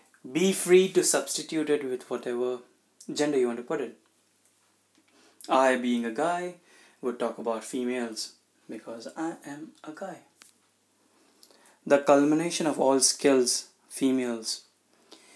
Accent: native